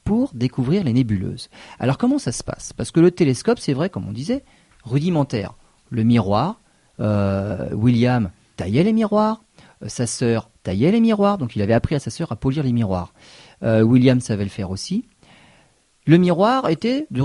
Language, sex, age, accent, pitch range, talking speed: French, male, 40-59, French, 115-175 Hz, 185 wpm